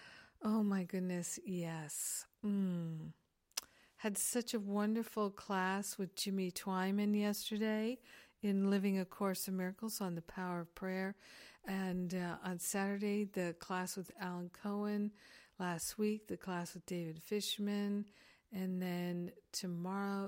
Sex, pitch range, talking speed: female, 180-205 Hz, 130 wpm